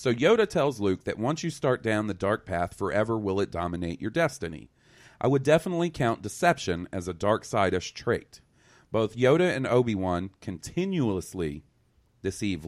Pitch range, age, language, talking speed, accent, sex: 95-130 Hz, 40-59, English, 160 wpm, American, male